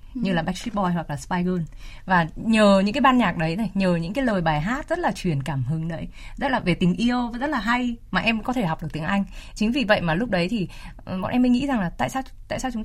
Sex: female